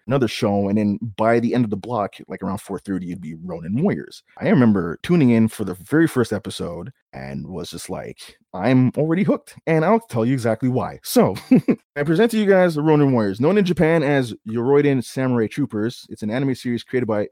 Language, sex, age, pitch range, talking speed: English, male, 30-49, 105-135 Hz, 215 wpm